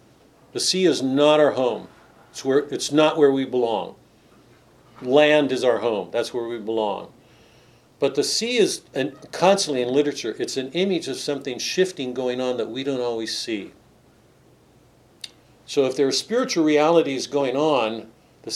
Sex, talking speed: male, 160 wpm